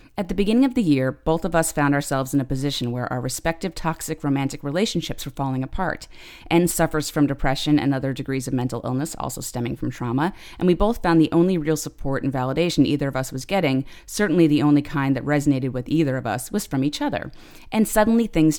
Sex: female